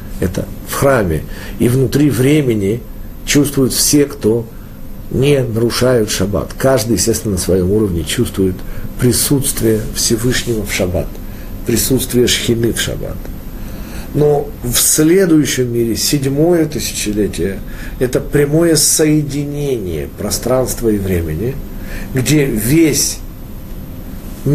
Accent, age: native, 50-69